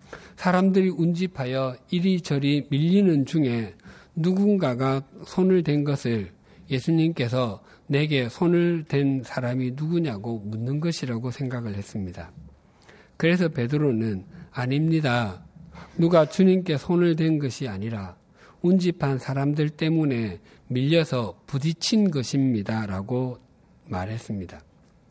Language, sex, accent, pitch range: Korean, male, native, 120-165 Hz